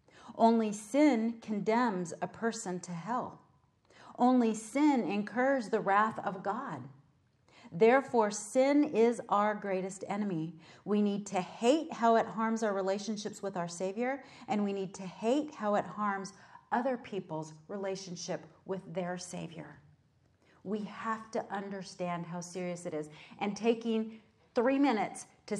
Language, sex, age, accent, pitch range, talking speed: English, female, 40-59, American, 180-230 Hz, 140 wpm